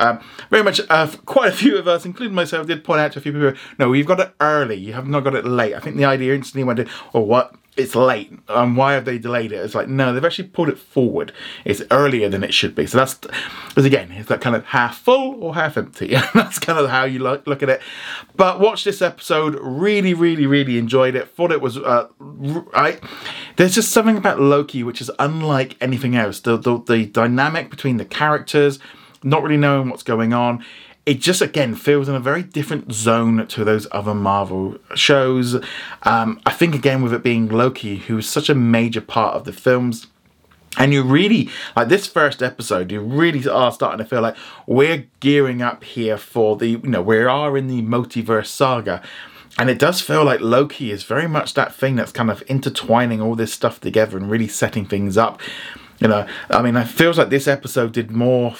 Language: English